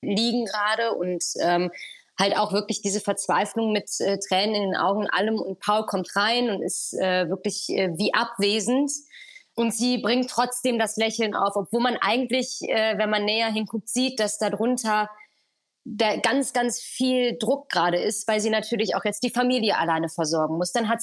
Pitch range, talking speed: 200-240 Hz, 185 wpm